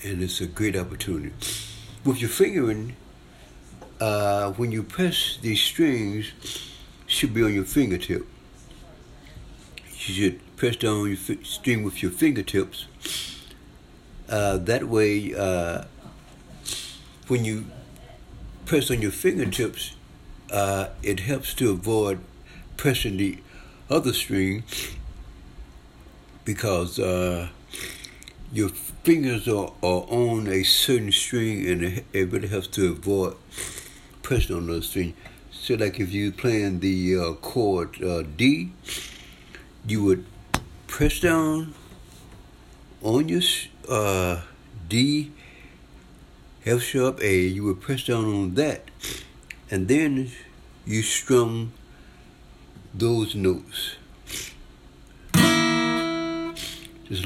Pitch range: 90-120 Hz